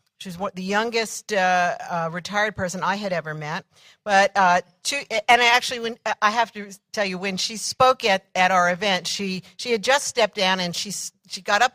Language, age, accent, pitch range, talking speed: English, 60-79, American, 170-210 Hz, 220 wpm